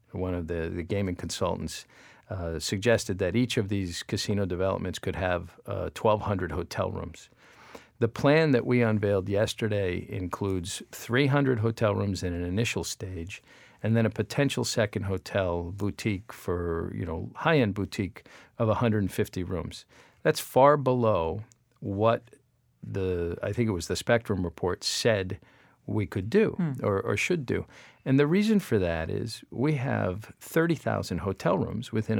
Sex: male